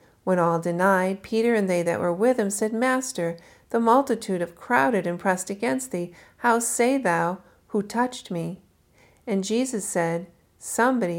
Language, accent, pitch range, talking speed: English, American, 175-225 Hz, 160 wpm